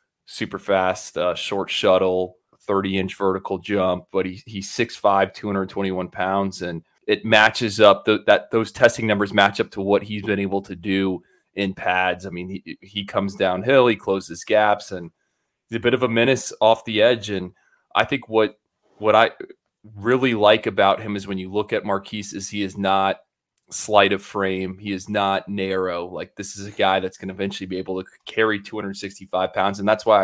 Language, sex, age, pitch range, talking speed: English, male, 20-39, 95-110 Hz, 195 wpm